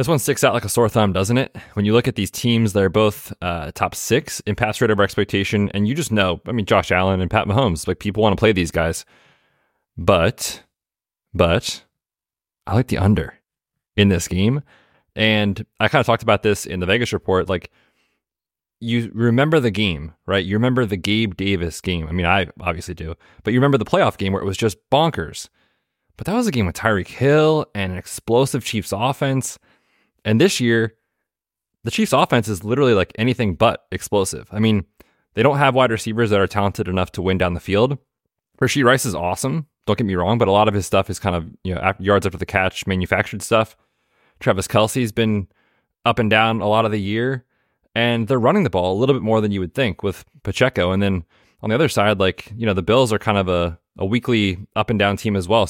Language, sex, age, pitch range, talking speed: English, male, 20-39, 95-120 Hz, 225 wpm